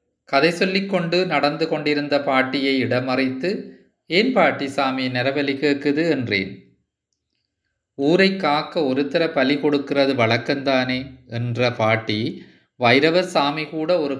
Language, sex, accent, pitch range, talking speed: Tamil, male, native, 130-165 Hz, 95 wpm